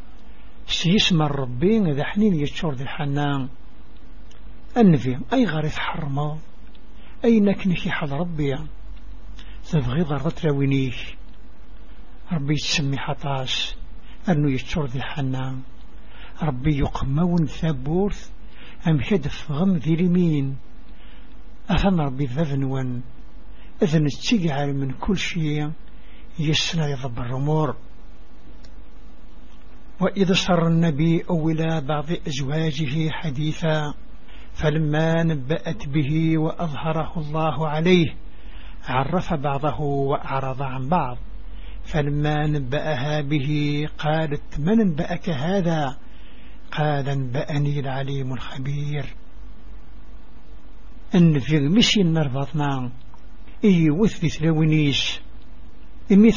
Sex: male